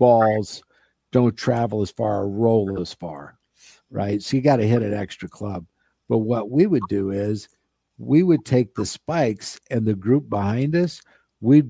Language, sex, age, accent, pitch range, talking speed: English, male, 50-69, American, 105-125 Hz, 175 wpm